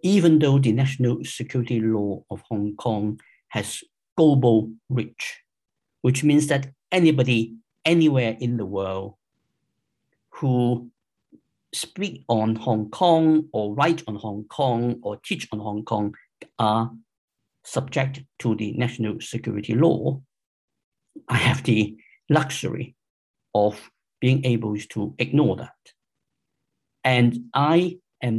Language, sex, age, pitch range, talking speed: English, male, 50-69, 110-140 Hz, 115 wpm